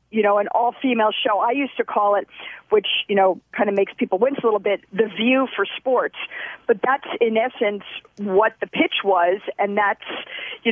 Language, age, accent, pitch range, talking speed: English, 40-59, American, 205-255 Hz, 200 wpm